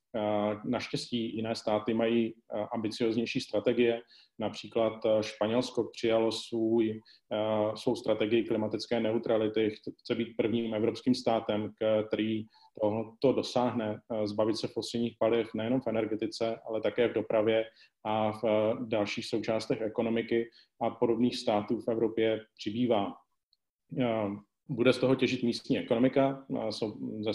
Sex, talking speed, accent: male, 110 wpm, native